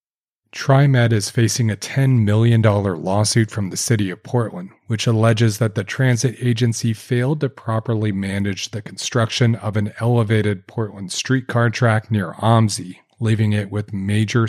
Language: English